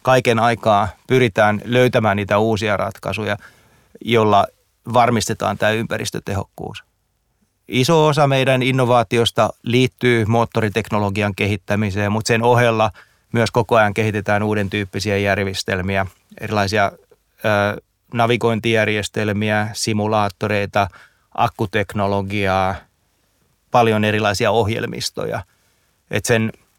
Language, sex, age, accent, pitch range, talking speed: Finnish, male, 30-49, native, 105-120 Hz, 85 wpm